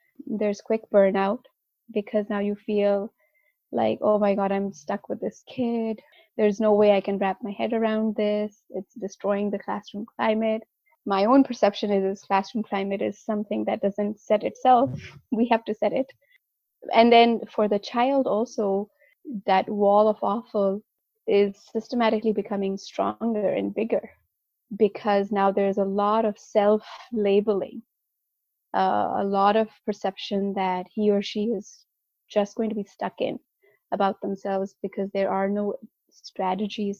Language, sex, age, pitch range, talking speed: English, female, 20-39, 200-230 Hz, 150 wpm